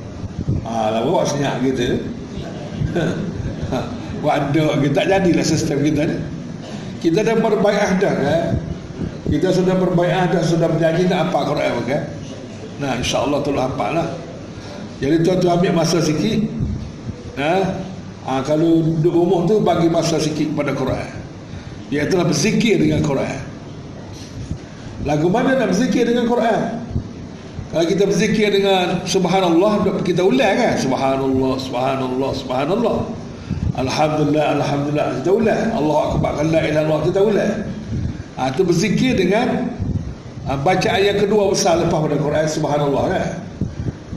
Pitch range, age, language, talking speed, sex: 150-205 Hz, 60-79, Malay, 130 wpm, male